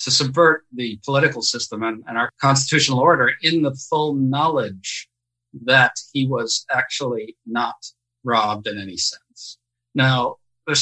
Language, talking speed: English, 140 wpm